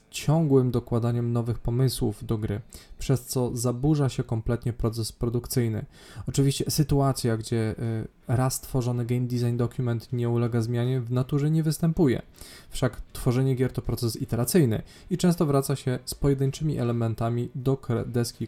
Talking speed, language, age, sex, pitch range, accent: 140 wpm, Polish, 20-39, male, 115-140 Hz, native